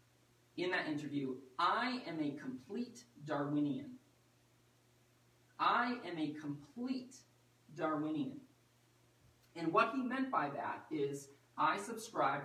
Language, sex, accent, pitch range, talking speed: English, male, American, 135-220 Hz, 105 wpm